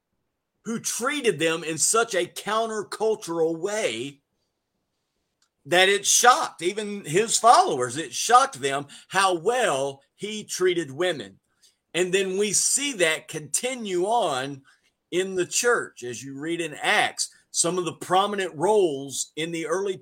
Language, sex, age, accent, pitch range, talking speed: English, male, 50-69, American, 165-225 Hz, 135 wpm